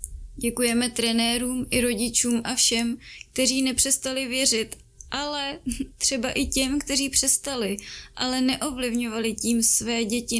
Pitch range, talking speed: 220-245 Hz, 115 wpm